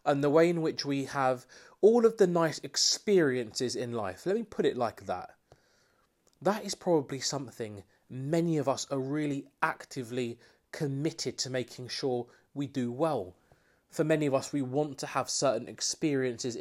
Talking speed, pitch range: 170 wpm, 135-180 Hz